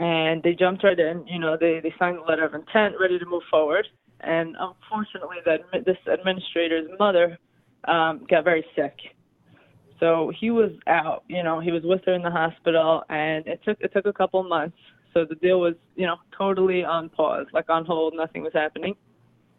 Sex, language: female, English